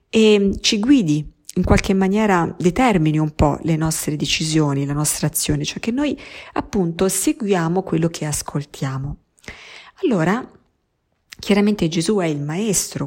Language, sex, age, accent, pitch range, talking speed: Italian, female, 50-69, native, 155-210 Hz, 135 wpm